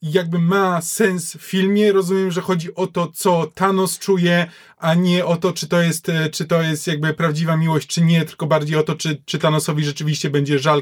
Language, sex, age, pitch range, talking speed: Polish, male, 20-39, 160-190 Hz, 210 wpm